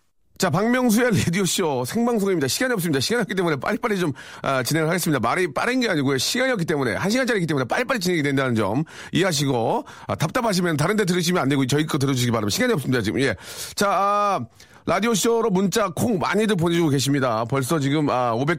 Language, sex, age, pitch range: Korean, male, 40-59, 140-195 Hz